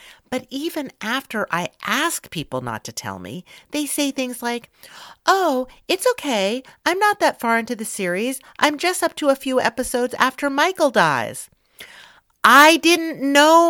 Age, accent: 50-69, American